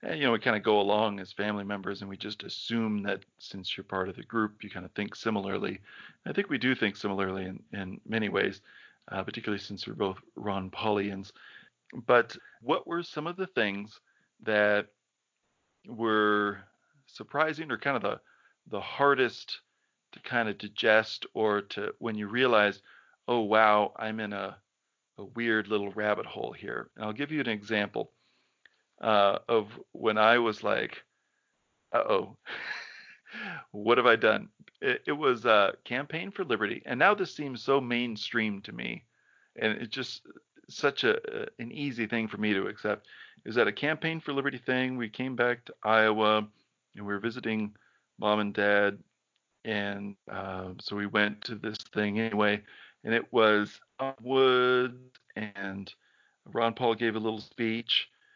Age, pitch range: 40-59, 100-120 Hz